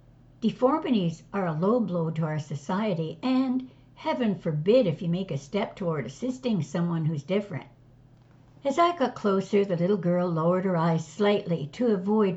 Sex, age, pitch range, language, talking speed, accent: female, 60-79, 145-210 Hz, English, 165 wpm, American